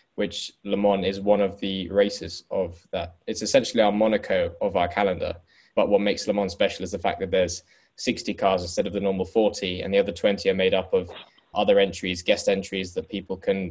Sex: male